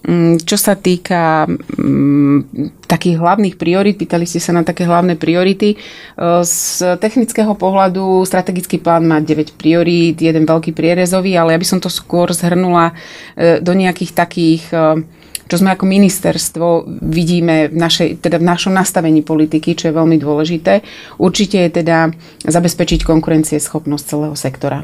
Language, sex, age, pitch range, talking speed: Slovak, female, 30-49, 160-180 Hz, 140 wpm